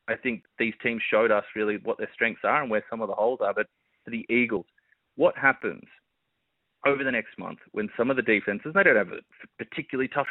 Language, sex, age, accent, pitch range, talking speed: English, male, 30-49, Australian, 110-140 Hz, 225 wpm